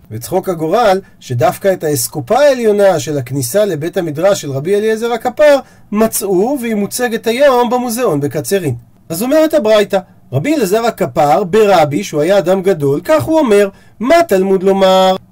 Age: 40-59